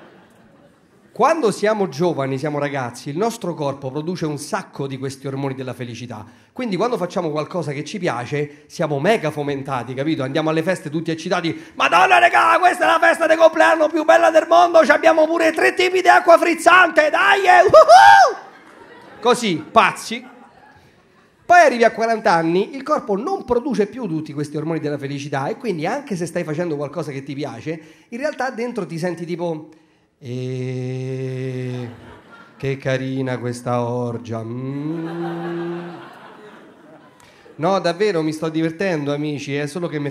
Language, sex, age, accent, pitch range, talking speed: Italian, male, 40-59, native, 140-205 Hz, 150 wpm